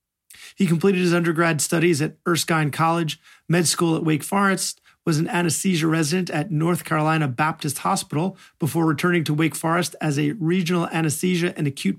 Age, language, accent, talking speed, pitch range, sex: 40-59, English, American, 165 wpm, 150-185 Hz, male